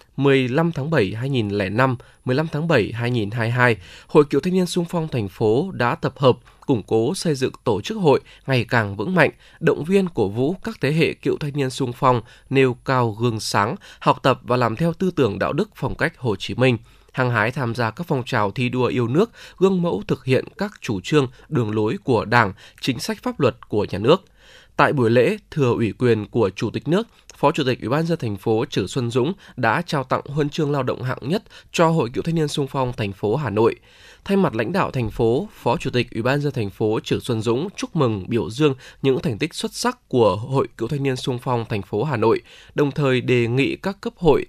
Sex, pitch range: male, 115-155 Hz